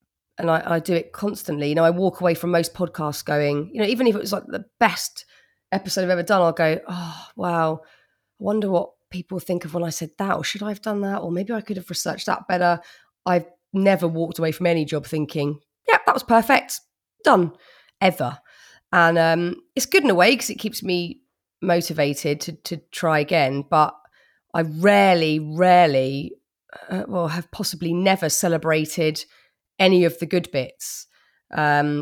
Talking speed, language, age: 190 wpm, English, 30-49